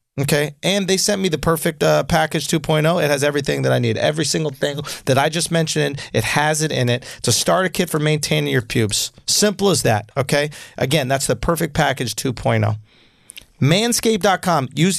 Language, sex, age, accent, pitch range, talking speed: English, male, 40-59, American, 125-170 Hz, 190 wpm